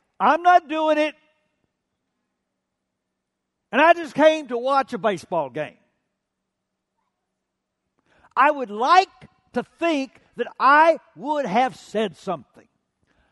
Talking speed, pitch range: 110 wpm, 175-245 Hz